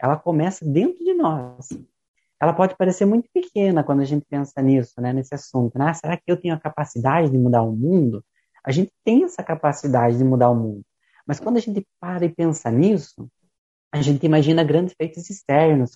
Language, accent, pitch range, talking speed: Portuguese, Brazilian, 130-175 Hz, 200 wpm